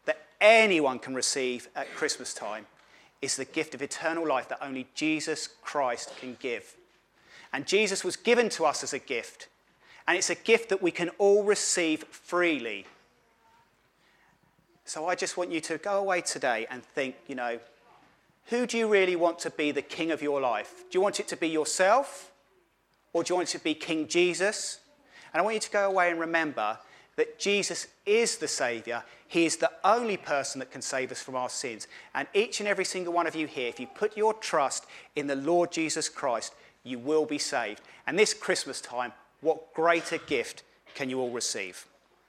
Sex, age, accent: male, 30-49, British